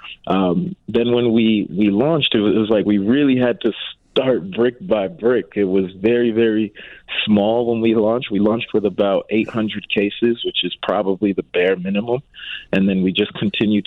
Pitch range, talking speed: 95-110 Hz, 185 wpm